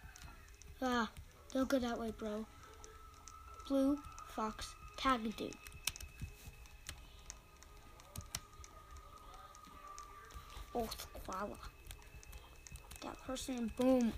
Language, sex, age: English, female, 20-39